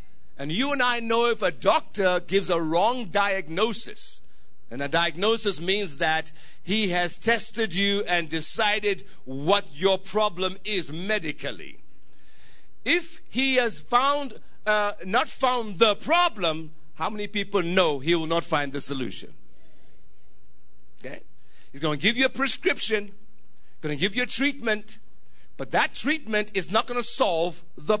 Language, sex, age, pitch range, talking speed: English, male, 50-69, 170-230 Hz, 145 wpm